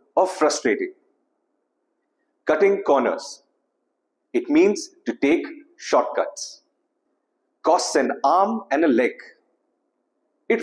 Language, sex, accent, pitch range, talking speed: English, male, Indian, 260-370 Hz, 90 wpm